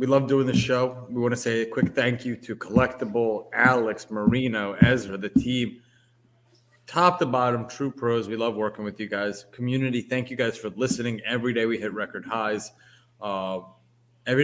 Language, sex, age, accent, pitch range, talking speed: English, male, 20-39, American, 105-125 Hz, 185 wpm